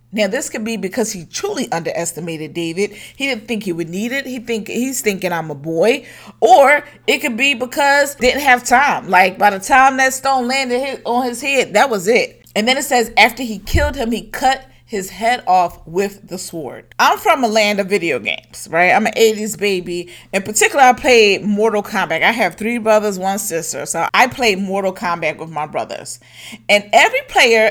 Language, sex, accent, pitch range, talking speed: English, female, American, 190-260 Hz, 210 wpm